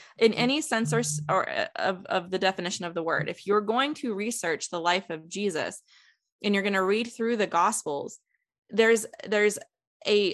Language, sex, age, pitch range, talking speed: English, female, 20-39, 175-225 Hz, 185 wpm